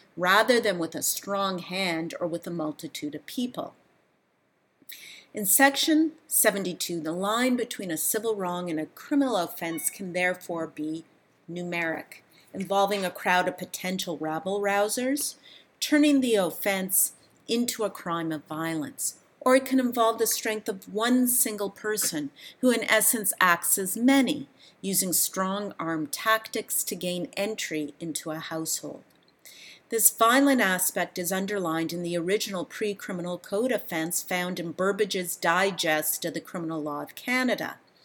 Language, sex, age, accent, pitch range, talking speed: English, female, 40-59, American, 170-225 Hz, 140 wpm